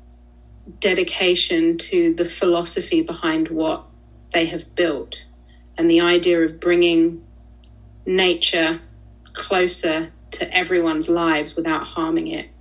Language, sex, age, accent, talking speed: English, female, 30-49, British, 105 wpm